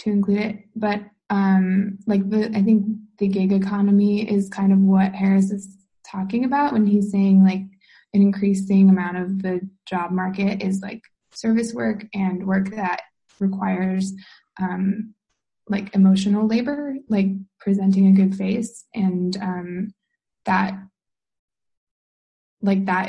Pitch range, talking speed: 185-205 Hz, 135 wpm